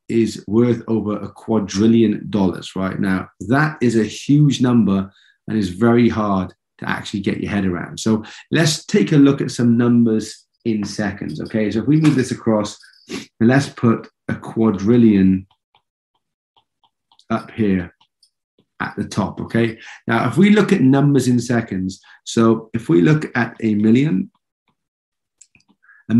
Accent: British